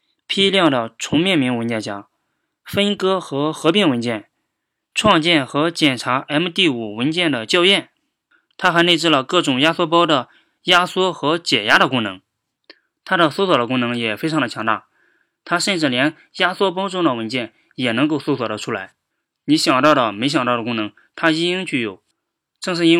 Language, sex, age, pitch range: Chinese, male, 20-39, 130-170 Hz